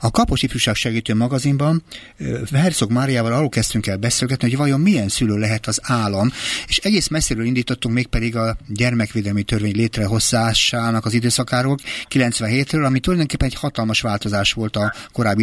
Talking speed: 150 wpm